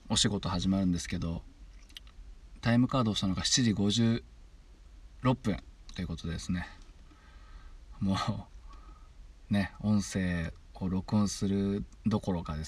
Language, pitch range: Japanese, 75-105 Hz